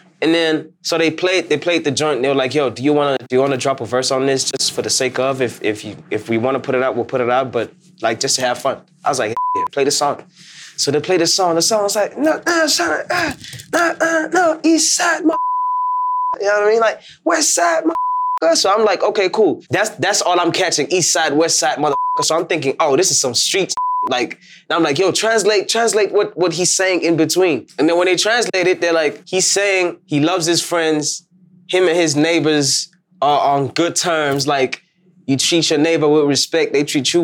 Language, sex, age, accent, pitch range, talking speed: English, male, 20-39, American, 140-200 Hz, 250 wpm